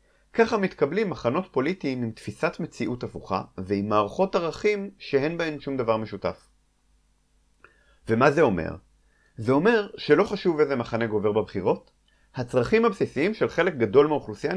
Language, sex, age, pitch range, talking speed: Hebrew, male, 30-49, 100-165 Hz, 135 wpm